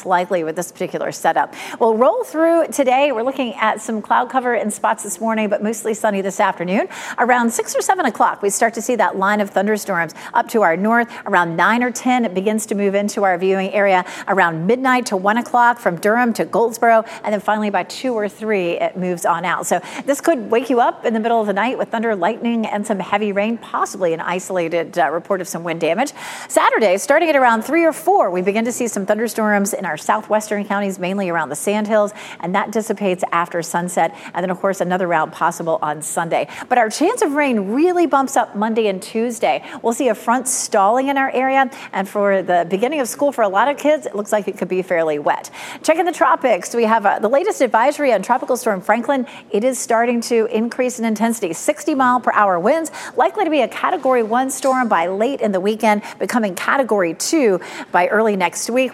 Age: 40-59